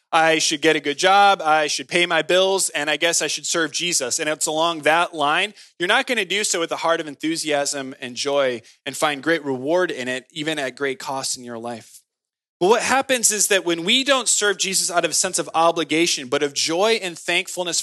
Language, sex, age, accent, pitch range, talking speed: English, male, 20-39, American, 150-205 Hz, 230 wpm